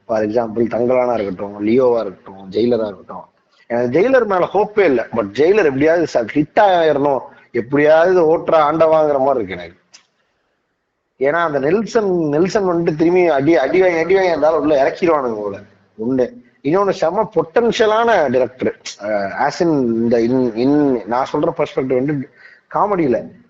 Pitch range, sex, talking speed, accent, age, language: 120-175 Hz, male, 125 wpm, native, 30-49, Tamil